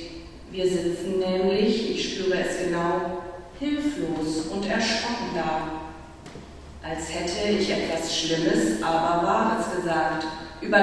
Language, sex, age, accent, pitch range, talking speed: German, female, 40-59, German, 160-225 Hz, 110 wpm